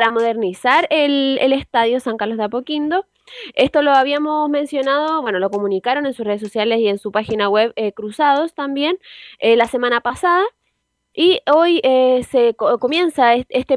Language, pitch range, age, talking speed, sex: Spanish, 225-300 Hz, 20-39, 175 wpm, female